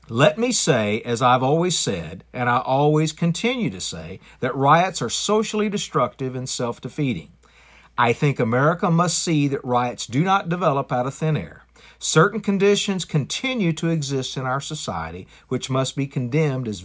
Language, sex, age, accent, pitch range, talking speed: English, male, 50-69, American, 120-170 Hz, 165 wpm